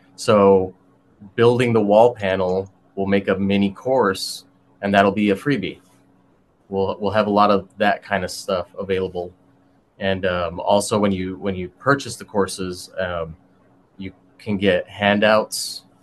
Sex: male